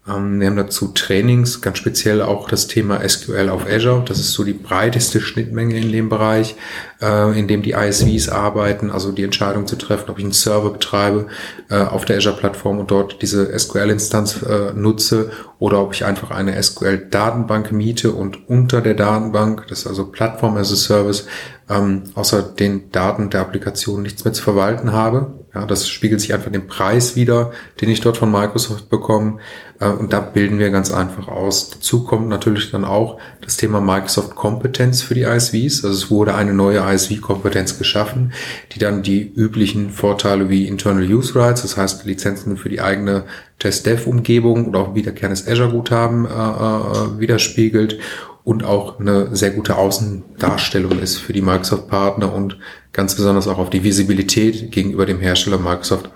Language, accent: German, German